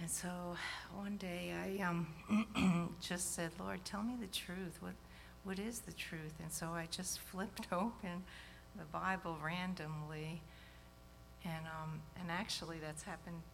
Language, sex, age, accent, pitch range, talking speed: English, female, 60-79, American, 155-180 Hz, 145 wpm